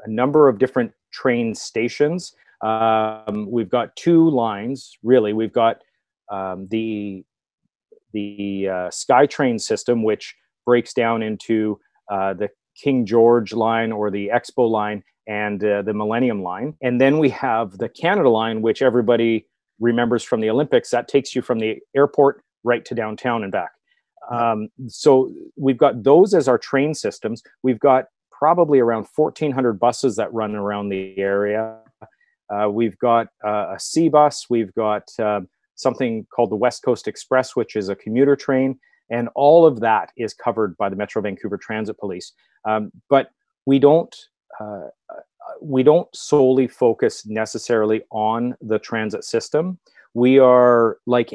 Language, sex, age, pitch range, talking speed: English, male, 30-49, 110-130 Hz, 155 wpm